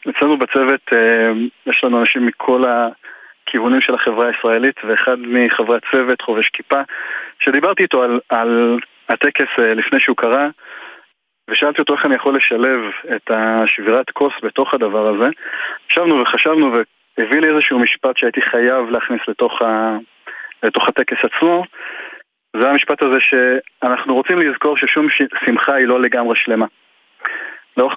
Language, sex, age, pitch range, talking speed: Hebrew, male, 30-49, 120-140 Hz, 135 wpm